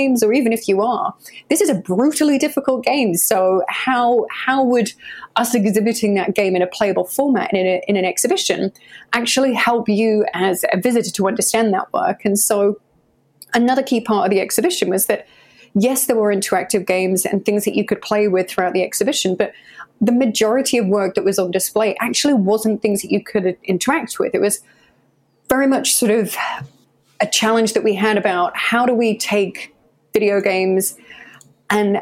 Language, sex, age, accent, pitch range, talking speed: English, female, 30-49, British, 190-235 Hz, 185 wpm